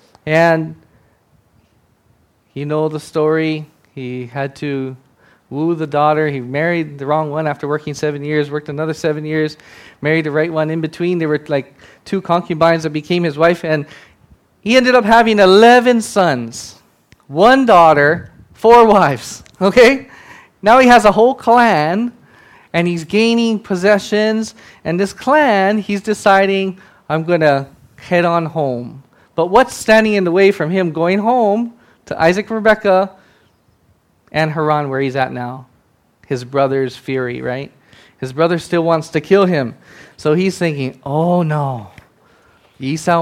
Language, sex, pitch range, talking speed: English, male, 140-190 Hz, 150 wpm